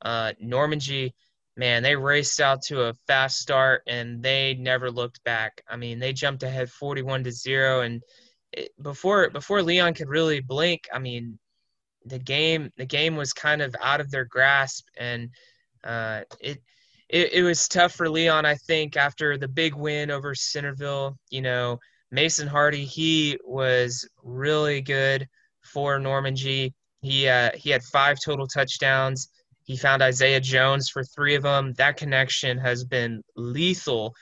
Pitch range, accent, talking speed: 125-145 Hz, American, 160 wpm